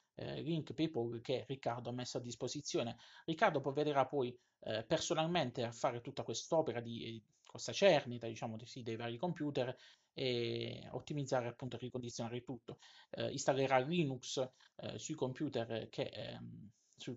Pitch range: 120-145 Hz